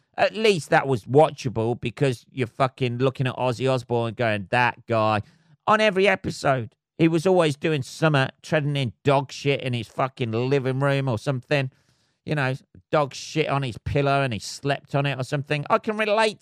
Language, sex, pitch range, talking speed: English, male, 125-155 Hz, 190 wpm